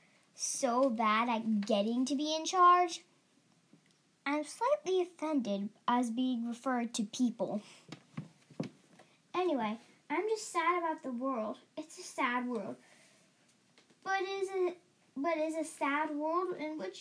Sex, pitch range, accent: female, 225-315 Hz, American